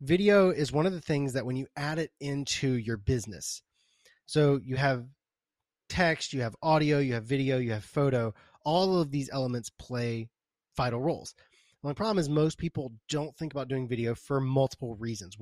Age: 20-39